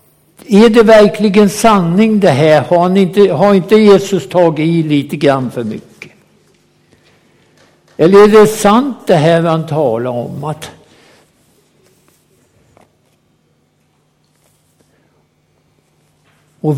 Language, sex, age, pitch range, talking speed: Swedish, male, 60-79, 125-170 Hz, 105 wpm